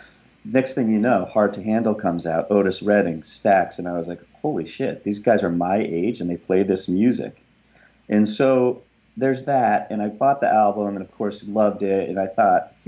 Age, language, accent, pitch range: 40-59, English, American, 85-105 Hz